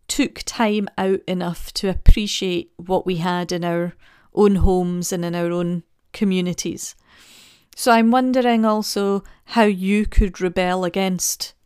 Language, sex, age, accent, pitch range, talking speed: English, female, 40-59, British, 180-205 Hz, 140 wpm